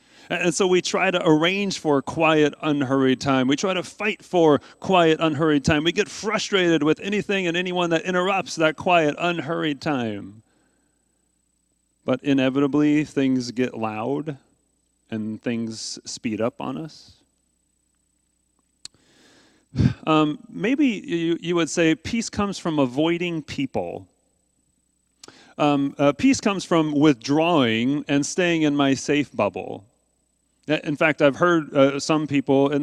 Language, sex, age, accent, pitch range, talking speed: English, male, 40-59, American, 135-175 Hz, 135 wpm